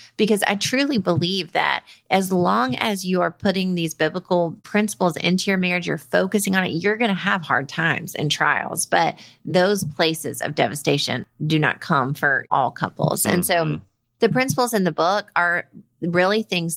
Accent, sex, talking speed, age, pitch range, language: American, female, 180 wpm, 30-49, 150-190 Hz, English